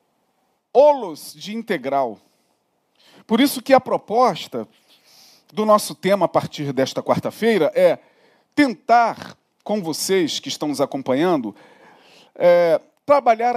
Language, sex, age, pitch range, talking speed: Portuguese, male, 40-59, 210-260 Hz, 105 wpm